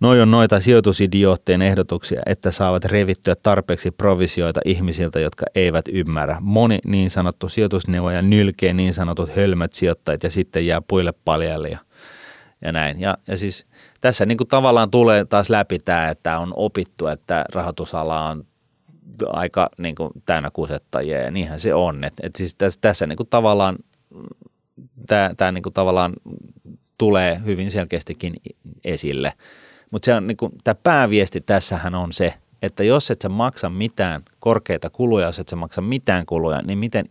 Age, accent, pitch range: 30-49, native, 85-105 Hz